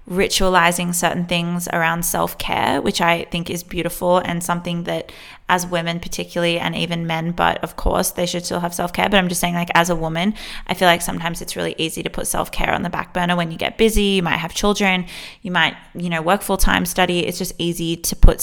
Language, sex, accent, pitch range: English, female, Australian, 170-195 Hz